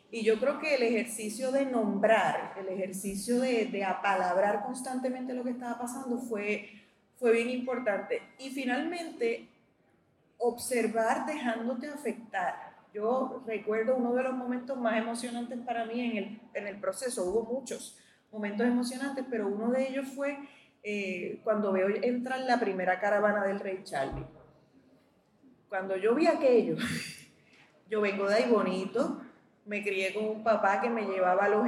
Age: 30-49